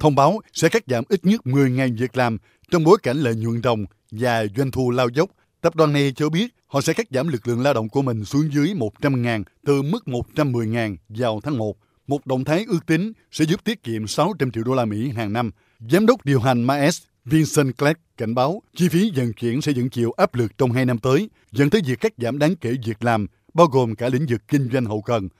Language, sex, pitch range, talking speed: Vietnamese, male, 115-150 Hz, 240 wpm